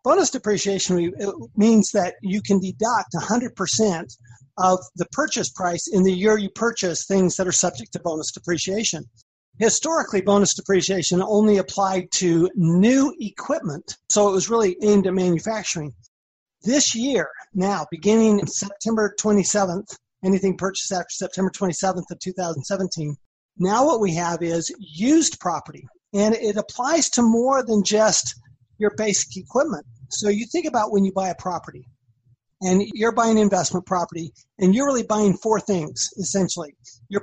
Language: English